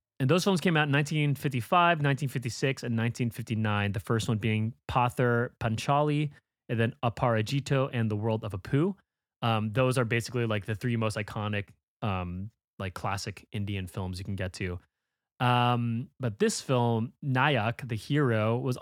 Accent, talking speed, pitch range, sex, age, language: American, 160 wpm, 105-130 Hz, male, 30-49, English